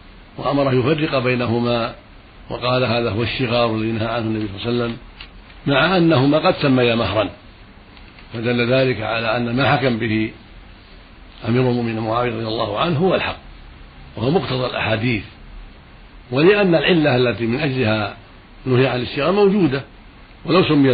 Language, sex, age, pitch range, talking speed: Arabic, male, 60-79, 105-130 Hz, 140 wpm